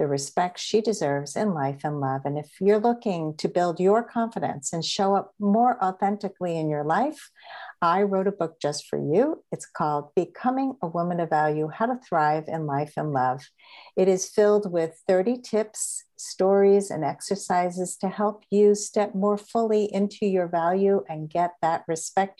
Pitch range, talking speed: 165-210 Hz, 180 wpm